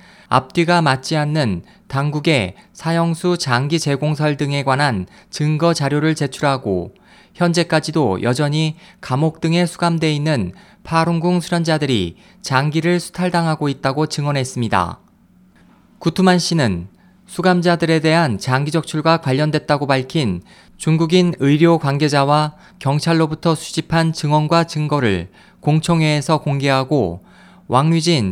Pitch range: 140-170 Hz